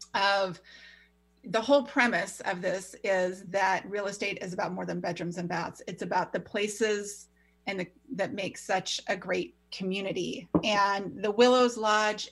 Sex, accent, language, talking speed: female, American, English, 160 wpm